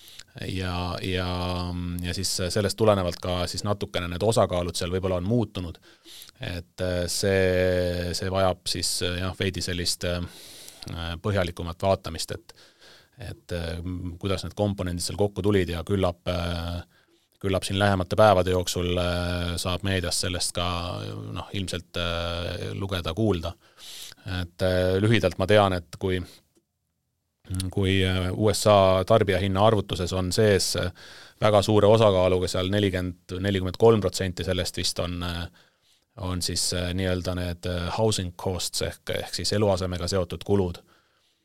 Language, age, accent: English, 30-49, Finnish